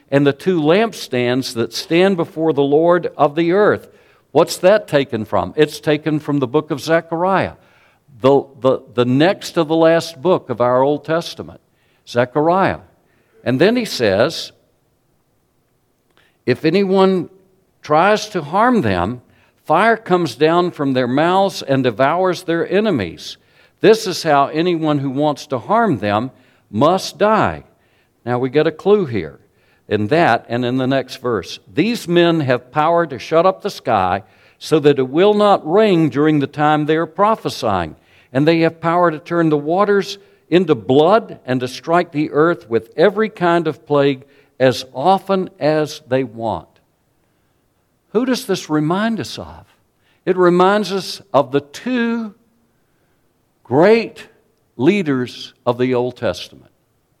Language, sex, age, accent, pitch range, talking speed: English, male, 60-79, American, 130-180 Hz, 150 wpm